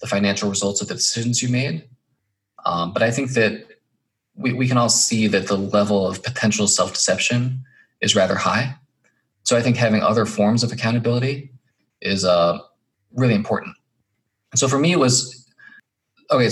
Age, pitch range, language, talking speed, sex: 20-39, 100-125 Hz, English, 165 wpm, male